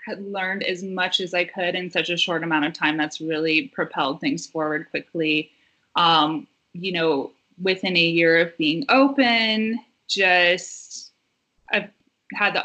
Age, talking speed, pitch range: 20-39, 155 wpm, 165-200 Hz